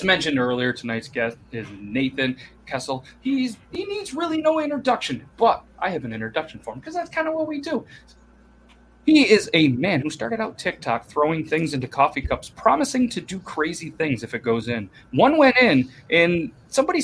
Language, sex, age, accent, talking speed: English, male, 30-49, American, 190 wpm